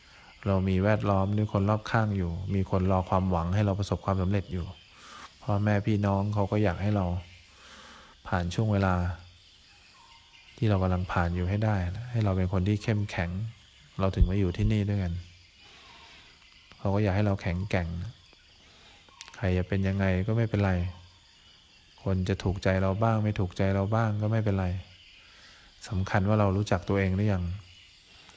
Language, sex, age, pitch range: English, male, 20-39, 90-105 Hz